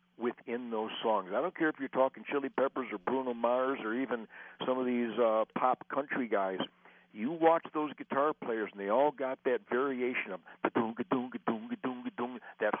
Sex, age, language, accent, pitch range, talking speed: male, 60-79, English, American, 125-175 Hz, 170 wpm